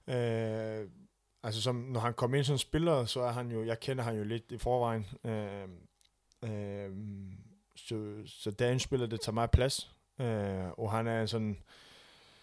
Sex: male